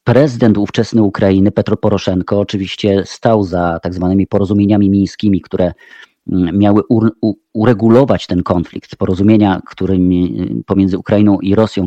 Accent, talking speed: native, 120 wpm